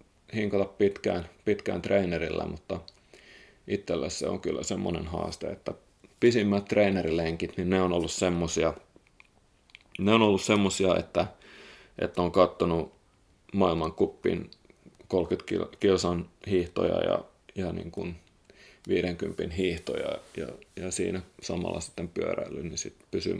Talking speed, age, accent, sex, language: 120 wpm, 30-49, native, male, Finnish